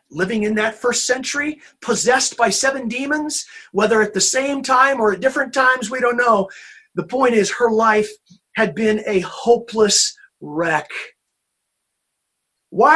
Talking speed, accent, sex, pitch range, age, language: 150 wpm, American, male, 195-255 Hz, 40-59, English